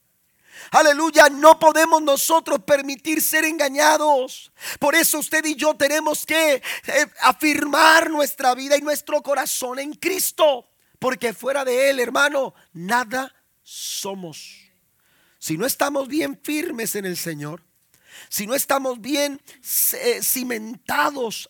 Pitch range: 175-290 Hz